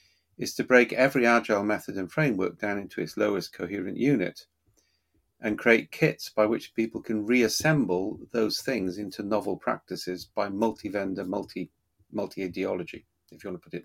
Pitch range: 100-115 Hz